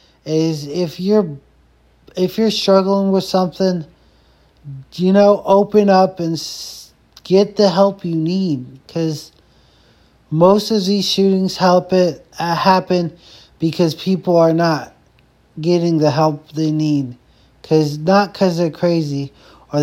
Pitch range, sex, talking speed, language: 150-180 Hz, male, 130 wpm, English